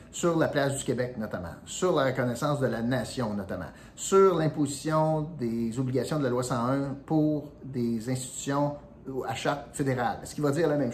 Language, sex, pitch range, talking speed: French, male, 115-150 Hz, 180 wpm